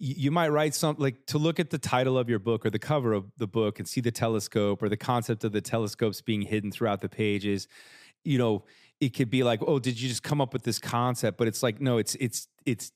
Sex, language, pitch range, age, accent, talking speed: male, English, 105-125 Hz, 30-49, American, 260 wpm